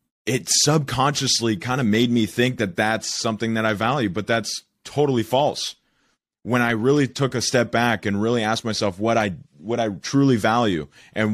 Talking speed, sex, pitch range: 185 wpm, male, 105-130 Hz